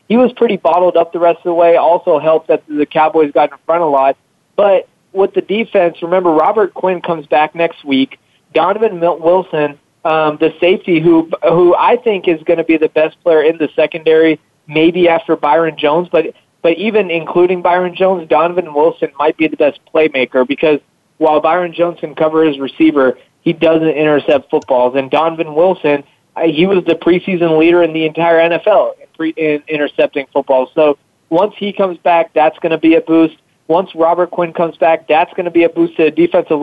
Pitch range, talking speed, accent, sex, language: 150-170 Hz, 195 wpm, American, male, English